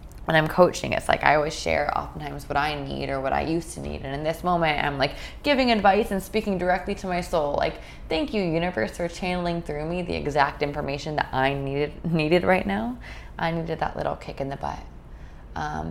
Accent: American